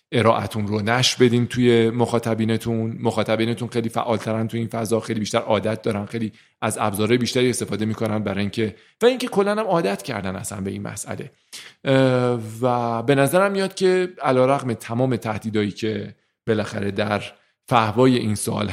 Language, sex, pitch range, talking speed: Persian, male, 105-120 Hz, 155 wpm